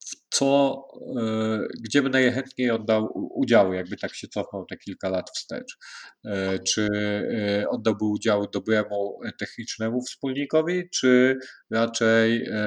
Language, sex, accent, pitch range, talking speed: Polish, male, native, 100-115 Hz, 105 wpm